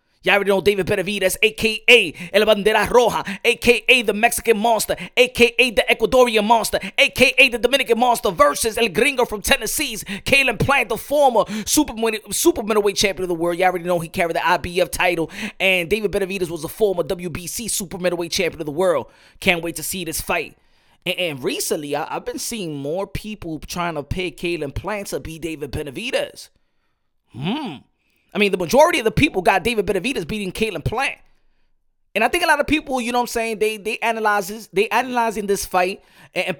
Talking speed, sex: 190 wpm, male